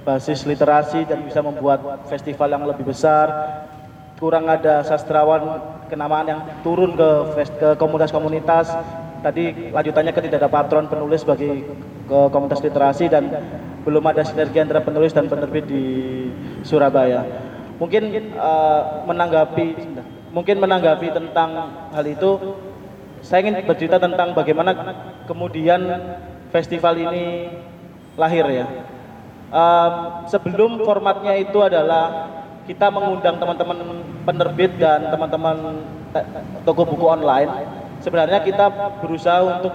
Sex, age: male, 20-39